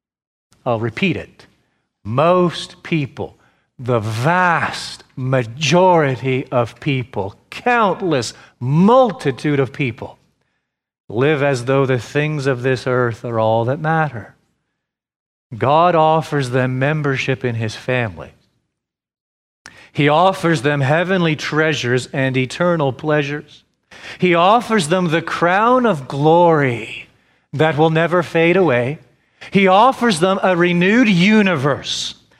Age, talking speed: 40-59, 110 wpm